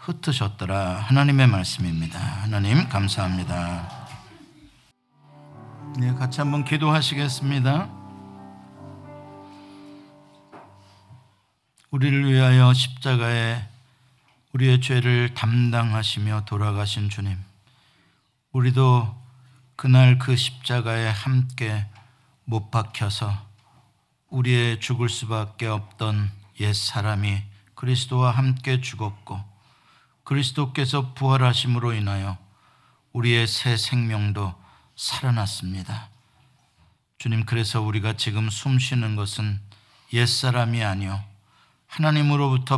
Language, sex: Korean, male